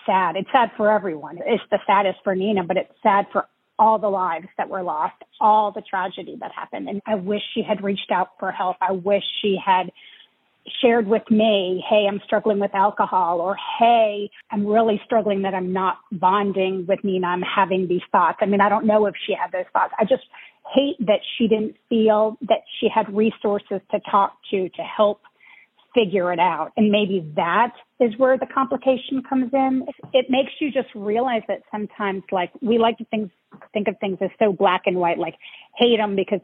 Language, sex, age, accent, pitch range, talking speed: English, female, 40-59, American, 190-225 Hz, 205 wpm